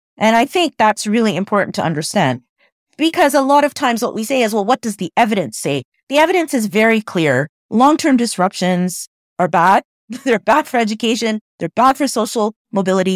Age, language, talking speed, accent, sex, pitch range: 30-49, English, 185 wpm, American, female, 175-230 Hz